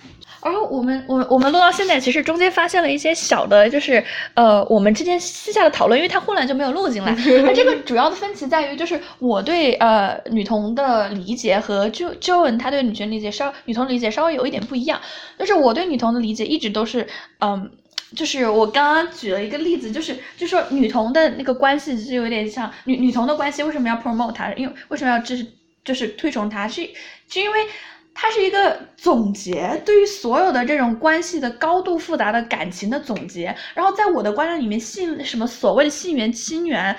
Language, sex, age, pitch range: Chinese, female, 10-29, 225-330 Hz